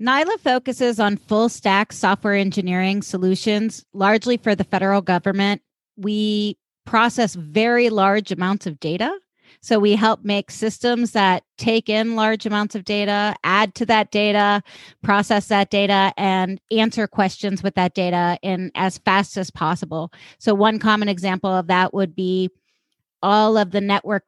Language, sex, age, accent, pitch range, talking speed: English, female, 30-49, American, 185-210 Hz, 155 wpm